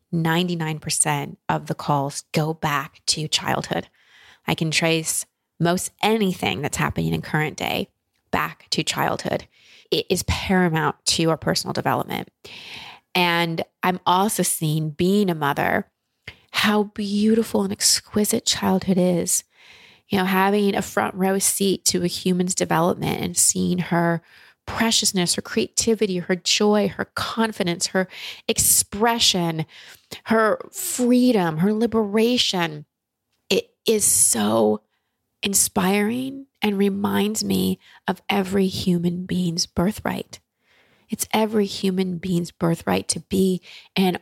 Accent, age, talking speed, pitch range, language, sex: American, 20-39, 120 wpm, 170-205 Hz, English, female